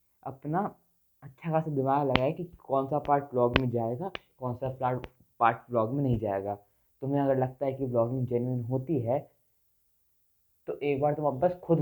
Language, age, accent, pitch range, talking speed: Hindi, 20-39, native, 115-135 Hz, 180 wpm